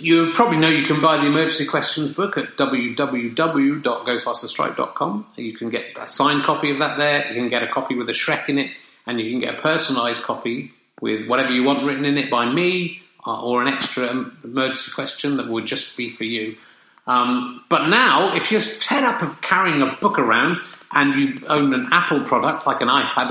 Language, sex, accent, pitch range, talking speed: English, male, British, 120-160 Hz, 205 wpm